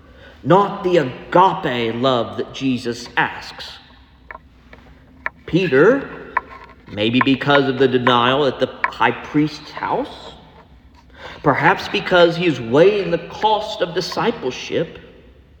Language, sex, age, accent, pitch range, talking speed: English, male, 50-69, American, 120-185 Hz, 105 wpm